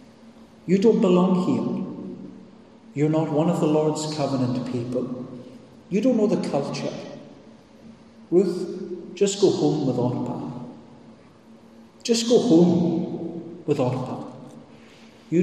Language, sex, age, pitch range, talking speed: English, male, 40-59, 140-200 Hz, 115 wpm